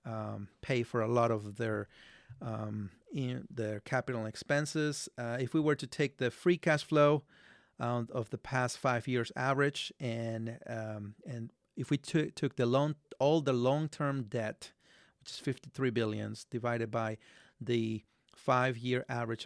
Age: 30-49